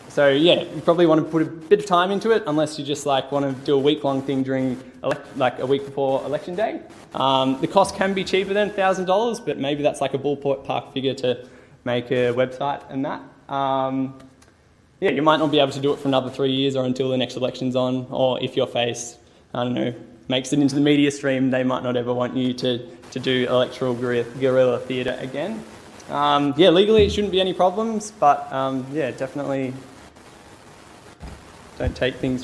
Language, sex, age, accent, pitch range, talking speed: English, male, 10-29, Australian, 130-160 Hz, 210 wpm